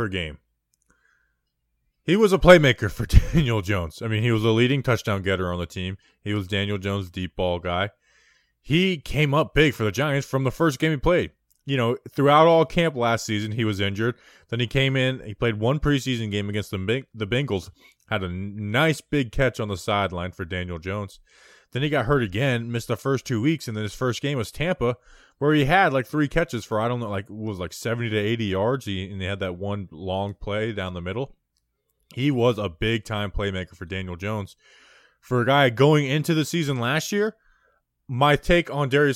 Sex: male